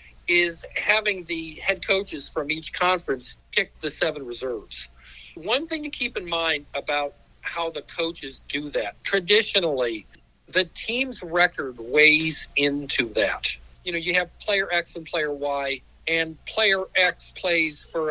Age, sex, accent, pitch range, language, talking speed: 50-69, male, American, 145-185 Hz, English, 150 wpm